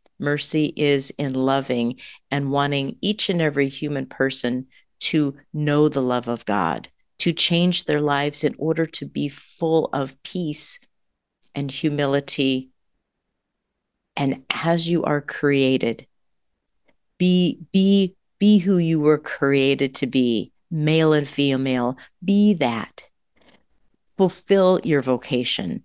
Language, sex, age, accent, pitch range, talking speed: English, female, 40-59, American, 135-165 Hz, 120 wpm